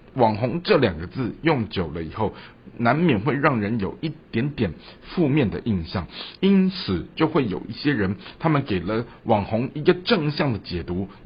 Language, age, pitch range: Chinese, 60-79, 95-155 Hz